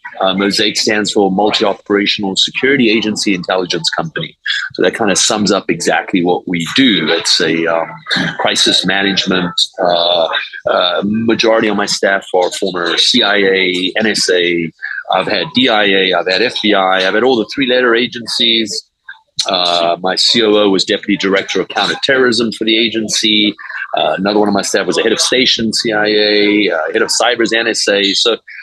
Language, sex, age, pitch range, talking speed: English, male, 30-49, 95-115 Hz, 160 wpm